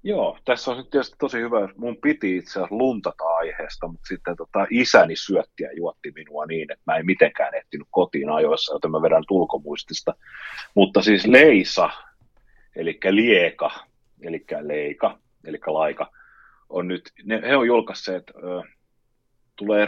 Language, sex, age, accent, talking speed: Finnish, male, 30-49, native, 150 wpm